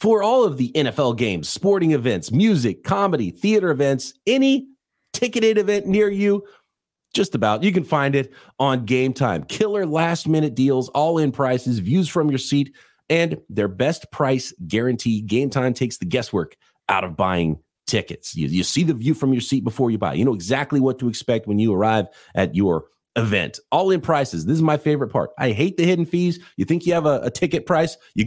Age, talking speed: 30-49, 205 wpm